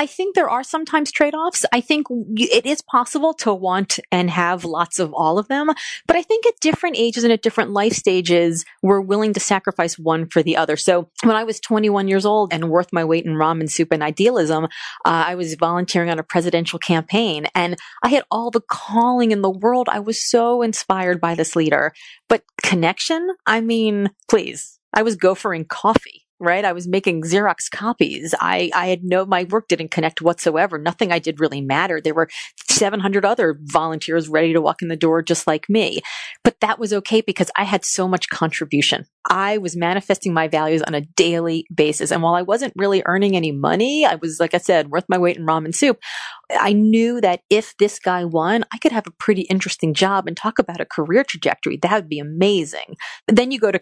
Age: 30-49